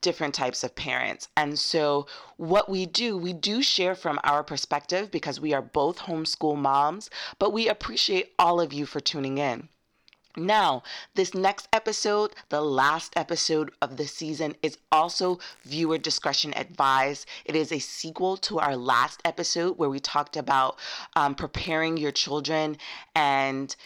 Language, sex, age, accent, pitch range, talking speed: English, female, 30-49, American, 145-185 Hz, 155 wpm